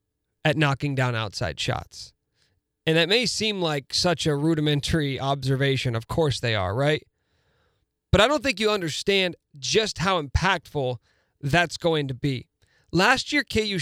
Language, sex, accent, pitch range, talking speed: English, male, American, 130-185 Hz, 150 wpm